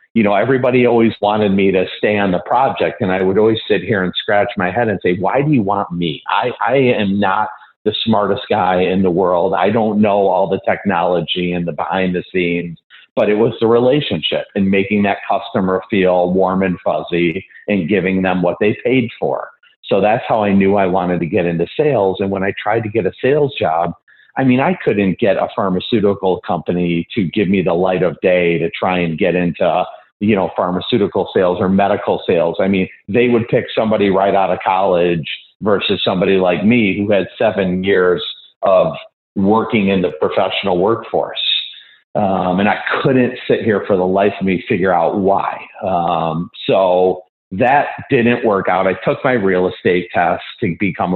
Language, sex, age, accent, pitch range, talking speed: English, male, 50-69, American, 90-105 Hz, 195 wpm